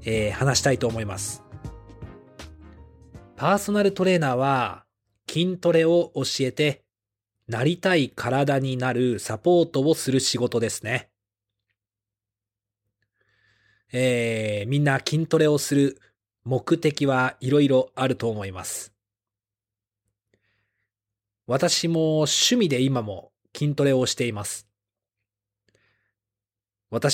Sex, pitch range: male, 105-140 Hz